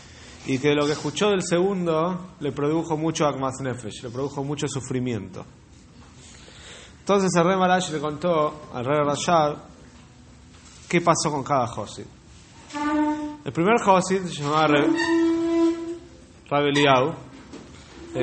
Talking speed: 120 wpm